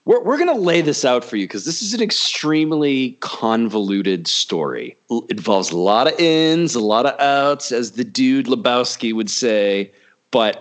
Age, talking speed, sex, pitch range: 40-59, 180 wpm, male, 105-140 Hz